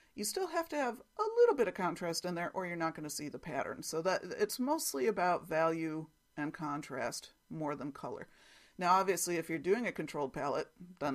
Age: 40-59